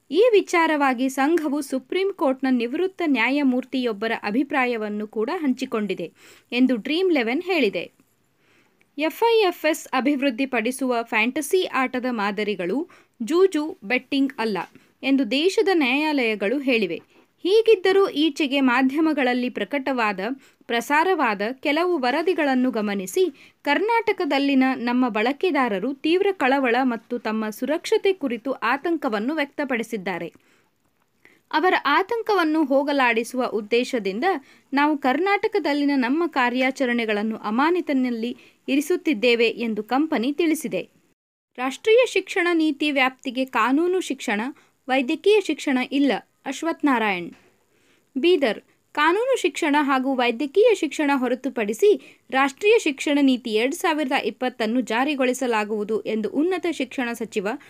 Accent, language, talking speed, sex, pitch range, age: native, Kannada, 90 wpm, female, 245-320 Hz, 20-39